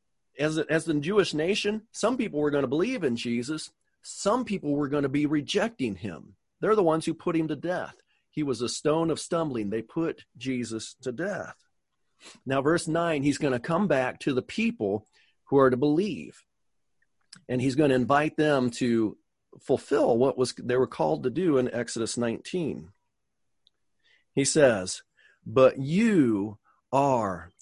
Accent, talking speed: American, 170 wpm